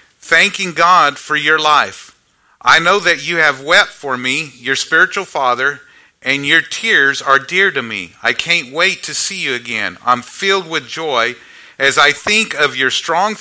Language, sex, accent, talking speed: English, male, American, 180 wpm